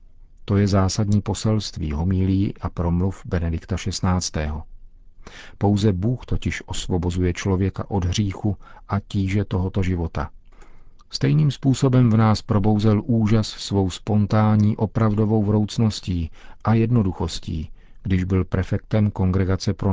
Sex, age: male, 50-69